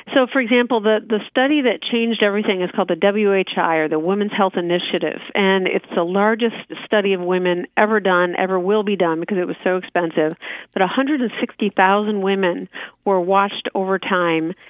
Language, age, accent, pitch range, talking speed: English, 50-69, American, 185-220 Hz, 175 wpm